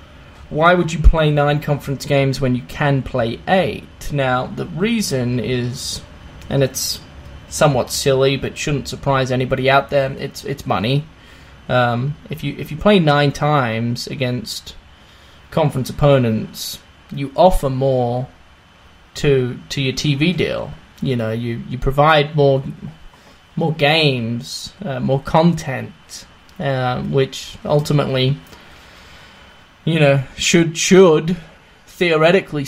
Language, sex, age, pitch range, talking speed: English, male, 10-29, 125-150 Hz, 125 wpm